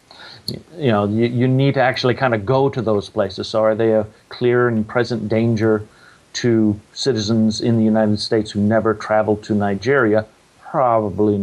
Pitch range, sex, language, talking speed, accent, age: 105-115 Hz, male, English, 175 wpm, American, 50-69